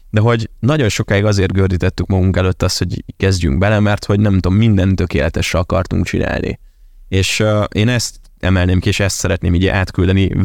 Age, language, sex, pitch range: 20-39, Hungarian, male, 95-120 Hz